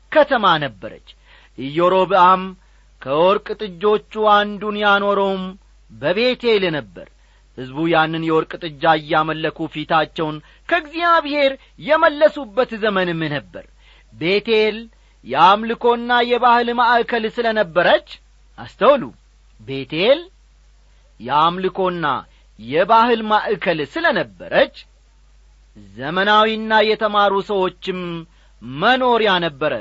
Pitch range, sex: 170-255 Hz, male